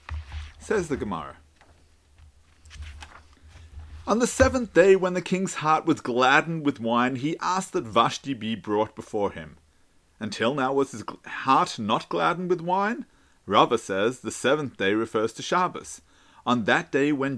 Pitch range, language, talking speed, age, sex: 115-185 Hz, English, 150 wpm, 40-59, male